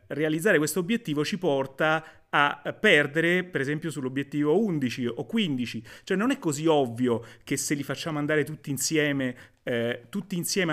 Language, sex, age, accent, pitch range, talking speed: Italian, male, 30-49, native, 130-165 Hz, 155 wpm